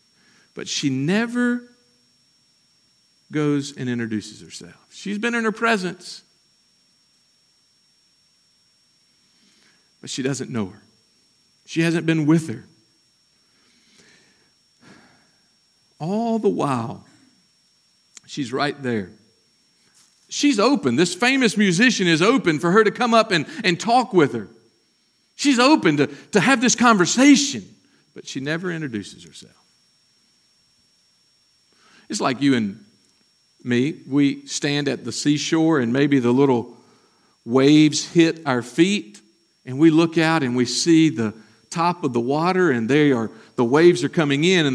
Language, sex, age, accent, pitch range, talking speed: English, male, 50-69, American, 125-180 Hz, 130 wpm